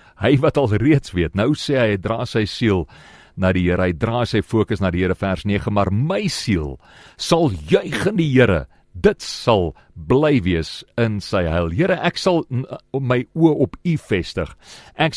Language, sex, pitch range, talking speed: English, male, 100-145 Hz, 185 wpm